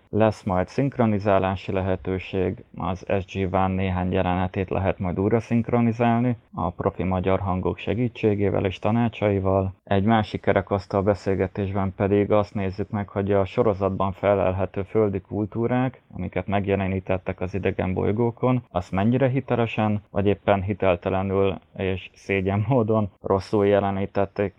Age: 20-39